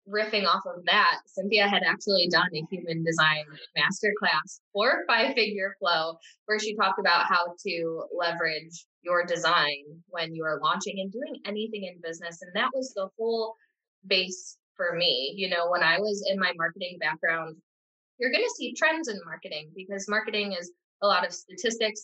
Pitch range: 170-215 Hz